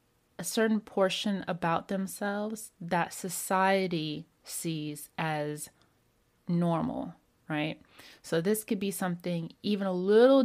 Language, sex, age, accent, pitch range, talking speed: English, female, 30-49, American, 165-195 Hz, 110 wpm